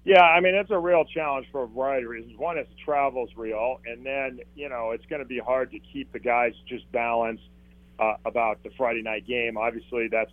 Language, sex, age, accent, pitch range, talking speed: English, male, 40-59, American, 100-120 Hz, 225 wpm